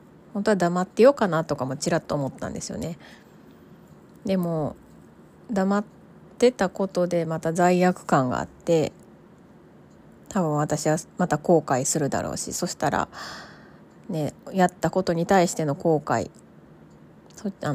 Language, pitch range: Japanese, 155-190 Hz